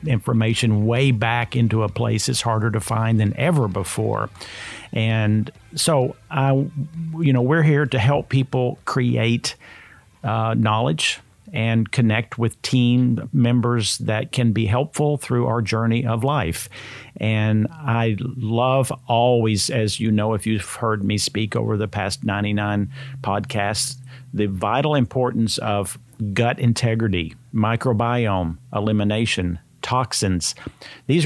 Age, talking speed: 50-69, 130 wpm